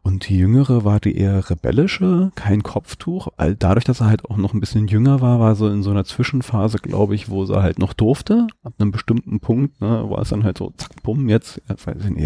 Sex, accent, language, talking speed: male, German, German, 250 wpm